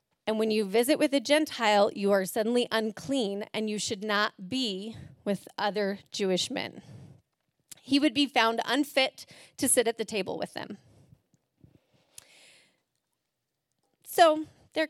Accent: American